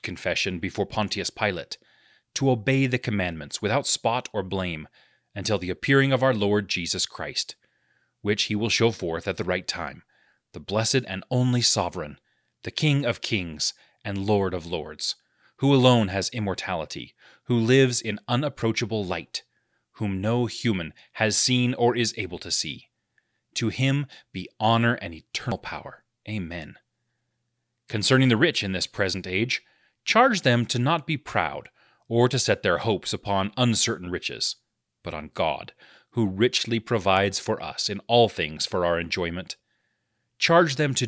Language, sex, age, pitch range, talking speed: English, male, 30-49, 95-125 Hz, 155 wpm